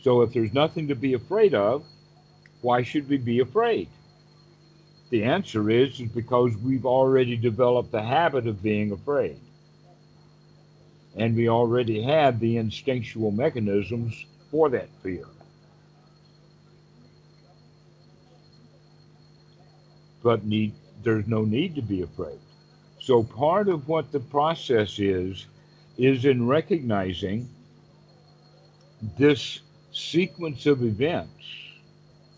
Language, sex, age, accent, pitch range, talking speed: English, male, 60-79, American, 115-150 Hz, 110 wpm